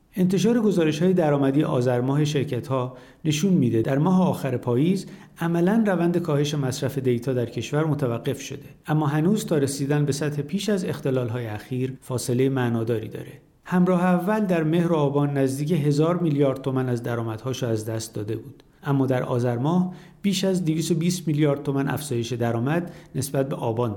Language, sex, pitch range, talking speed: Persian, male, 125-165 Hz, 165 wpm